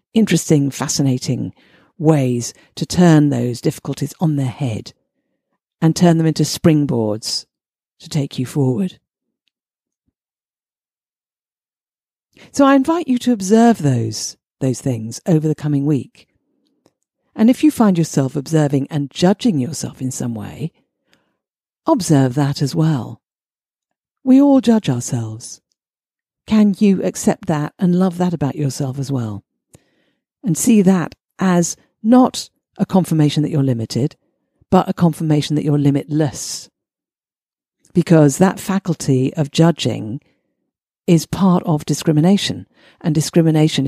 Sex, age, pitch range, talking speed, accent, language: female, 50-69, 140-180 Hz, 125 wpm, British, English